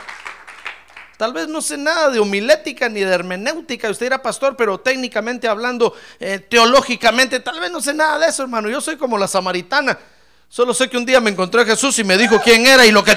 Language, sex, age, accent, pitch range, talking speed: Spanish, male, 50-69, Mexican, 215-300 Hz, 220 wpm